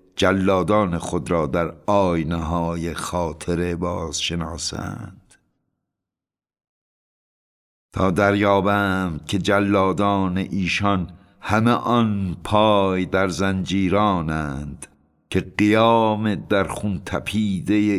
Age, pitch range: 60-79, 85-105 Hz